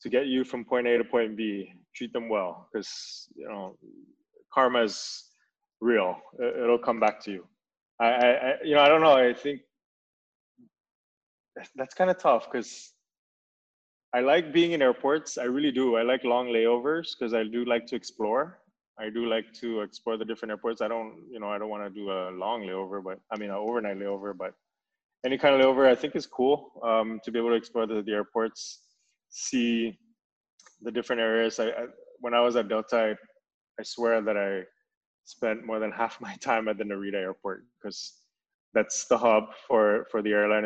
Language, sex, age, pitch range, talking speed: English, male, 20-39, 105-125 Hz, 195 wpm